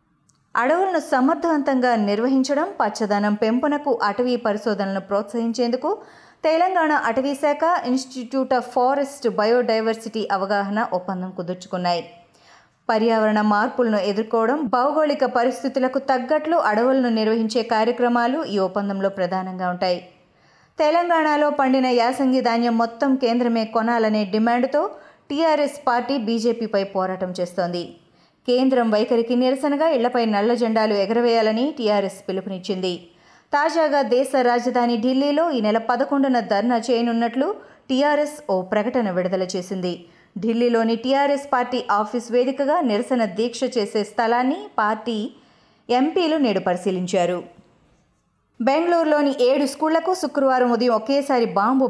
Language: Telugu